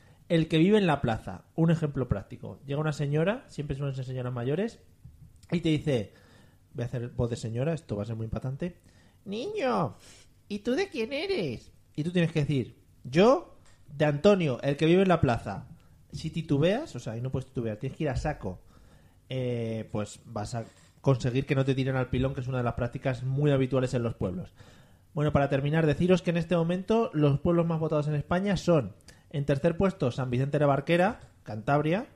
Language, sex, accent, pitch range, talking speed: Spanish, male, Spanish, 120-160 Hz, 205 wpm